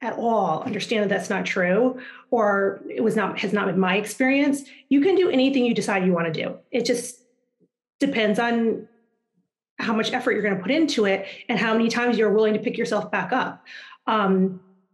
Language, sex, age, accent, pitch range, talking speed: English, female, 30-49, American, 205-250 Hz, 195 wpm